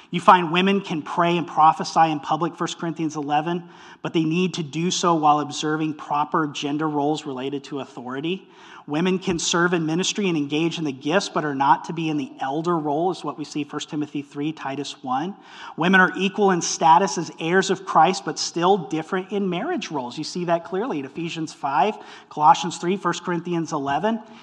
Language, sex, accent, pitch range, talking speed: English, male, American, 155-195 Hz, 200 wpm